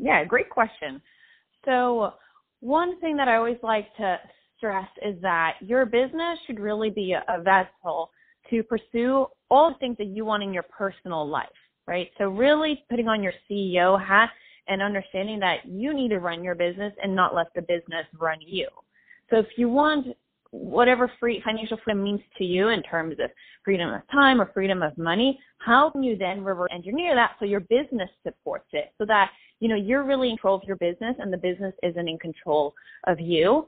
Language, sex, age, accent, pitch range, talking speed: English, female, 20-39, American, 185-255 Hz, 195 wpm